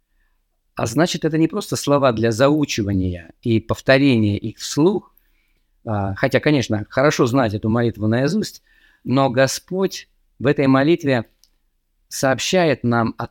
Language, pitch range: Russian, 110-145 Hz